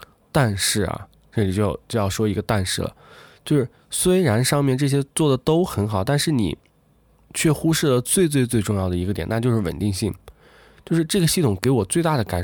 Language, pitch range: Chinese, 100-145 Hz